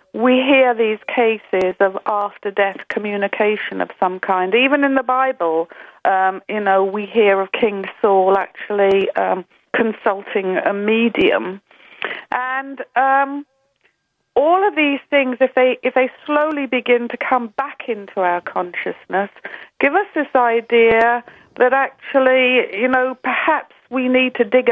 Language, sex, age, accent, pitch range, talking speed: English, female, 40-59, British, 200-255 Hz, 140 wpm